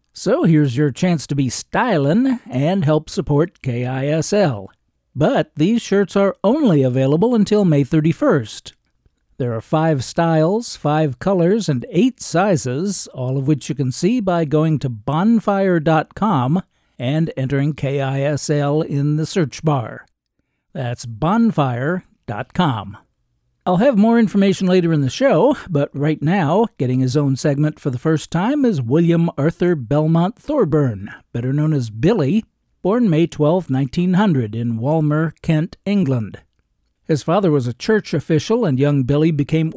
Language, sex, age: English, male, 60-79